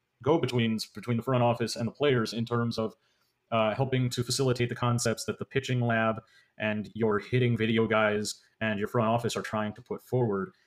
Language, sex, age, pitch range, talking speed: English, male, 30-49, 115-135 Hz, 200 wpm